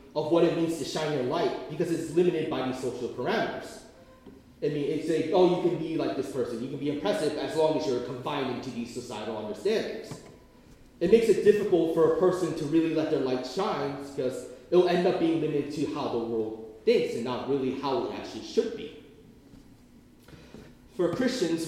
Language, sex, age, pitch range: Korean, male, 30-49, 140-200 Hz